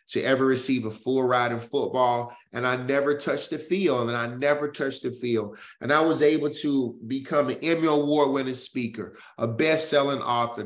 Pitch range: 135-175 Hz